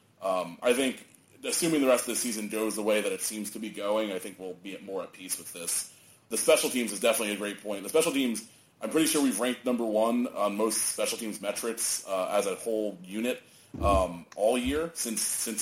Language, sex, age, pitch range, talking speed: English, male, 30-49, 100-120 Hz, 230 wpm